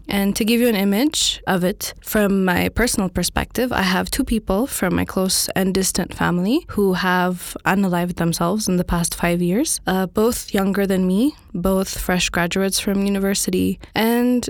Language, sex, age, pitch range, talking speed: English, female, 10-29, 180-210 Hz, 175 wpm